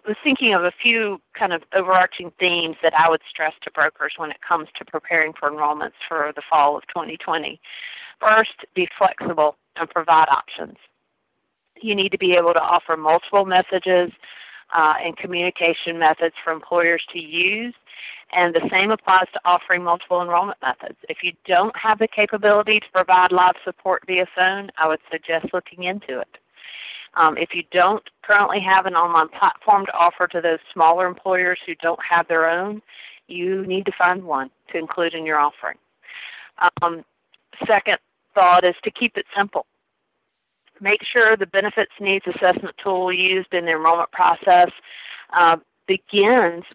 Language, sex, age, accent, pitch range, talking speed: English, female, 40-59, American, 165-195 Hz, 165 wpm